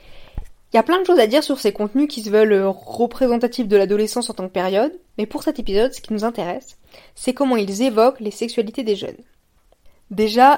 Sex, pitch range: female, 215-260 Hz